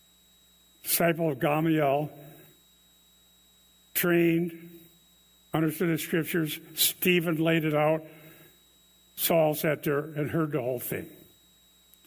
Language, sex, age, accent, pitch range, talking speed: English, male, 60-79, American, 140-180 Hz, 95 wpm